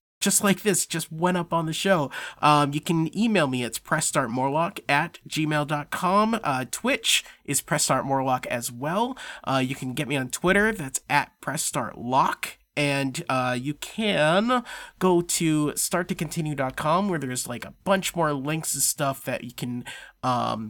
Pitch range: 135-180 Hz